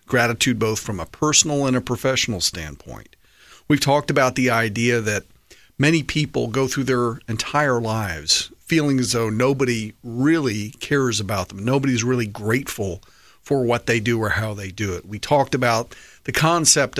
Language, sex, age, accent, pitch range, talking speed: English, male, 50-69, American, 105-135 Hz, 165 wpm